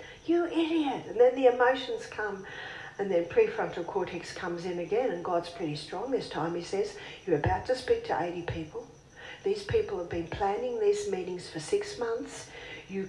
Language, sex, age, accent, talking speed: English, female, 50-69, Australian, 185 wpm